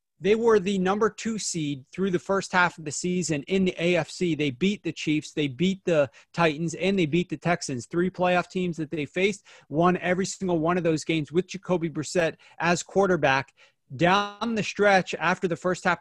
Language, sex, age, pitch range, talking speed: English, male, 30-49, 155-185 Hz, 200 wpm